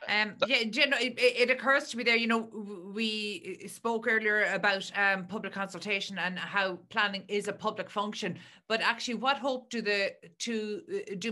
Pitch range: 180-210 Hz